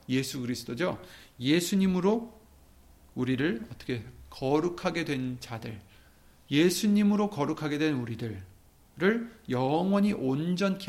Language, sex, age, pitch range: Korean, male, 40-59, 110-175 Hz